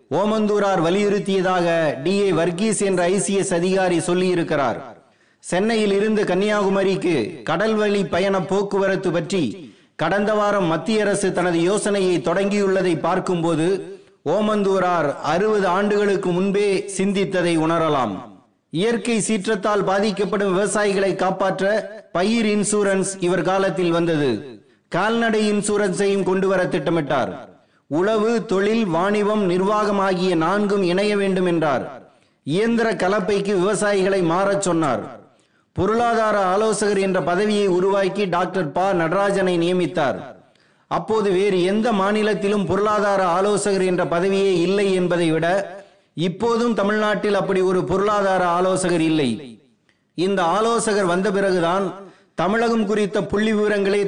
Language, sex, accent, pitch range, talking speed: Tamil, male, native, 180-210 Hz, 105 wpm